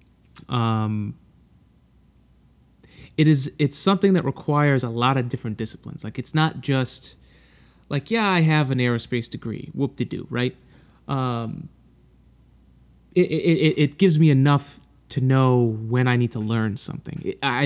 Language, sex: English, male